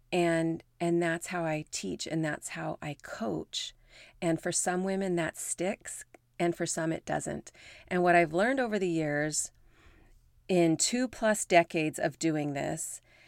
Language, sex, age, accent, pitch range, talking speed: English, female, 30-49, American, 150-190 Hz, 165 wpm